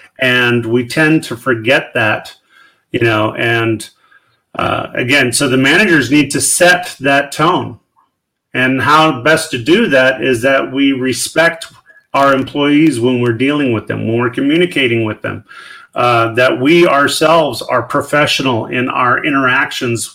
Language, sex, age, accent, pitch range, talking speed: English, male, 40-59, American, 115-140 Hz, 150 wpm